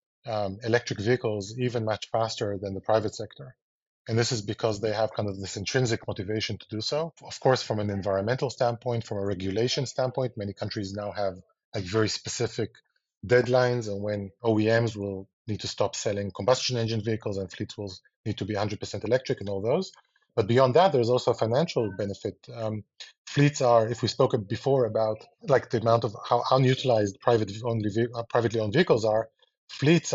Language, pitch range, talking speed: English, 105-125 Hz, 185 wpm